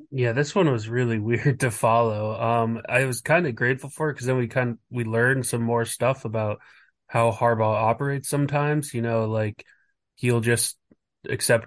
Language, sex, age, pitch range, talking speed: English, male, 20-39, 115-125 Hz, 180 wpm